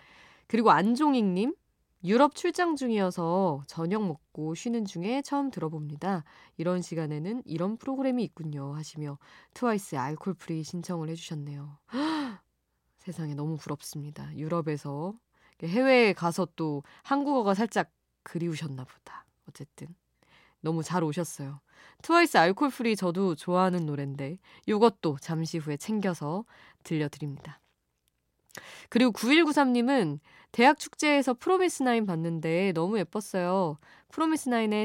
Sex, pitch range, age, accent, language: female, 160-230 Hz, 20-39, native, Korean